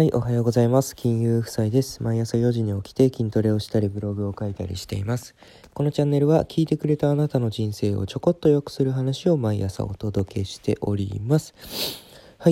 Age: 20-39